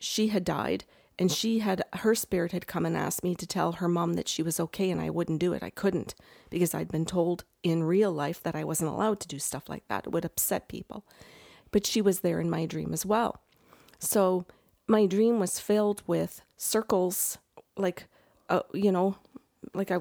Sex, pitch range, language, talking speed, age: female, 170-205 Hz, English, 210 wpm, 40-59